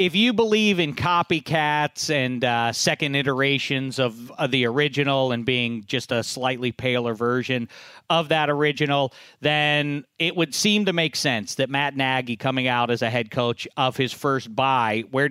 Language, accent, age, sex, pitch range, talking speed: English, American, 40-59, male, 120-150 Hz, 175 wpm